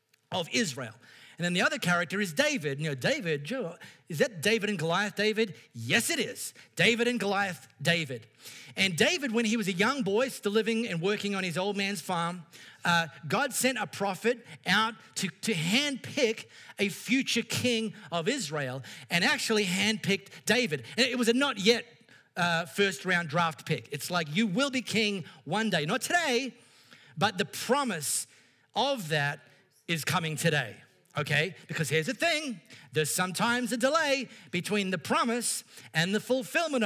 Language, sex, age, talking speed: English, male, 40-59, 170 wpm